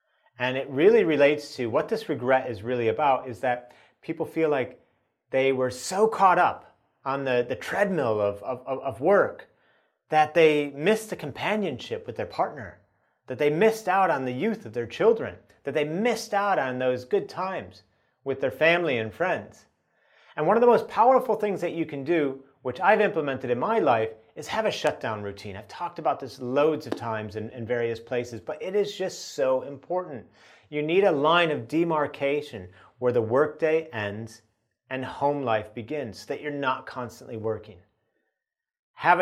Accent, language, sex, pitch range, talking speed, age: American, English, male, 125-175 Hz, 185 wpm, 30-49